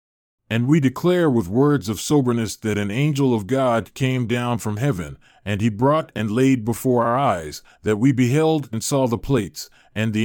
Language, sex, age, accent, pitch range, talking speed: English, male, 40-59, American, 105-140 Hz, 195 wpm